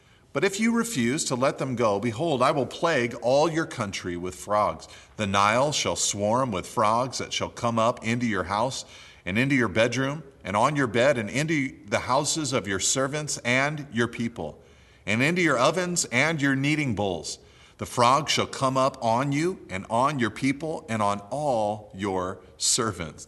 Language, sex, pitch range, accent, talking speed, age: English, male, 100-130 Hz, American, 185 wpm, 40-59